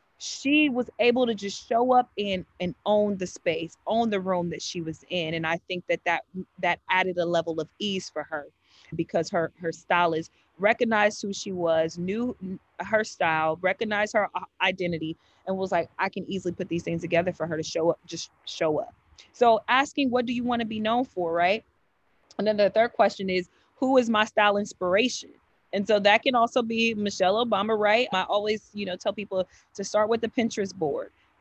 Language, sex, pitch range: English, female, 180-225 Hz